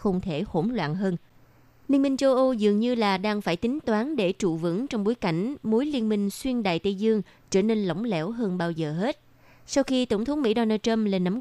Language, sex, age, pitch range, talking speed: Vietnamese, female, 20-39, 185-235 Hz, 240 wpm